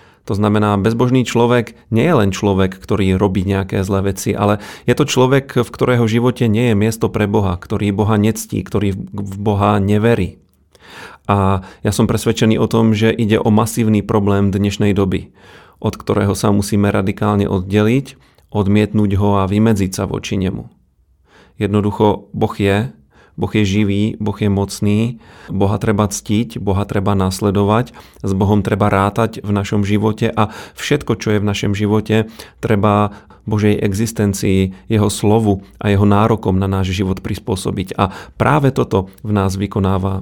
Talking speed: 155 wpm